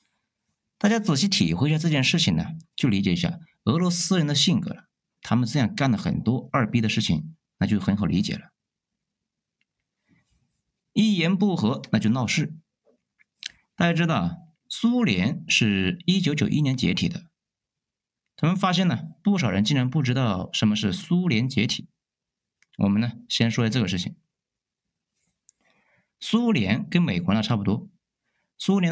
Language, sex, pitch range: Chinese, male, 115-175 Hz